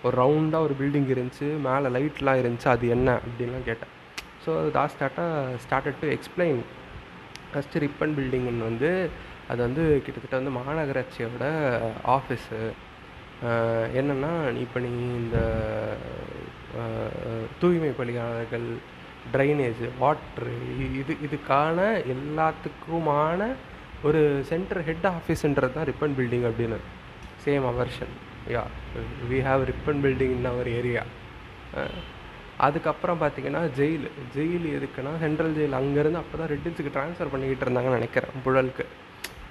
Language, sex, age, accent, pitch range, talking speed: Tamil, male, 30-49, native, 120-150 Hz, 110 wpm